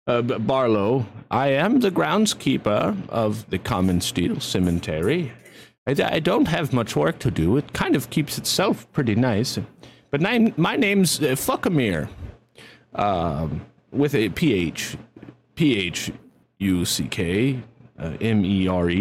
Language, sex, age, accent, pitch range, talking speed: English, male, 30-49, American, 95-140 Hz, 110 wpm